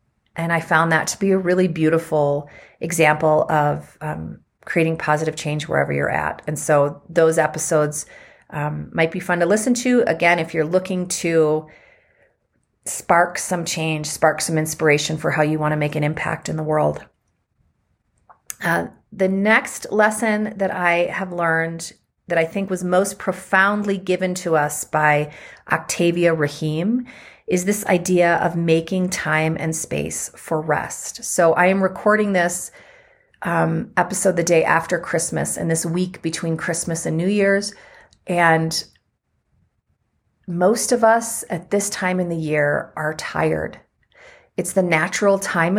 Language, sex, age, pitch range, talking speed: English, female, 40-59, 155-190 Hz, 150 wpm